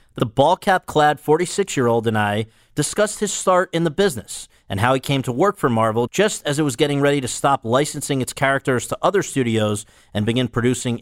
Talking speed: 220 wpm